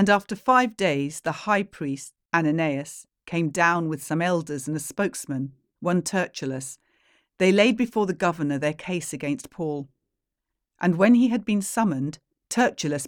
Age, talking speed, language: 40-59, 155 wpm, English